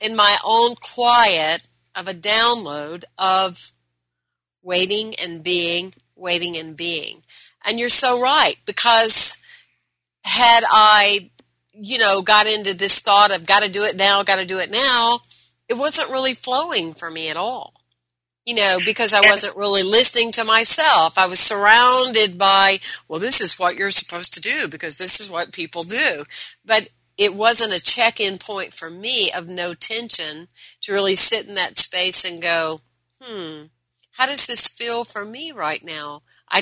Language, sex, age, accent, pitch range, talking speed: English, female, 50-69, American, 170-225 Hz, 170 wpm